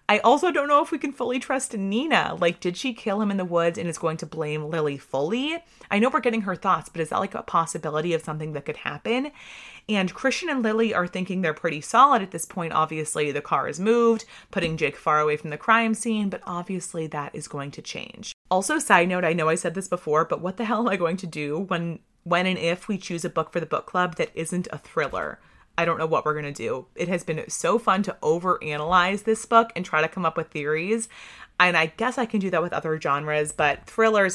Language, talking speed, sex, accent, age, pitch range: English, 250 wpm, female, American, 30-49, 160-215 Hz